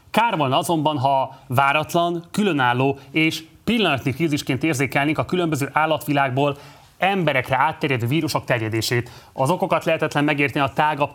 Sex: male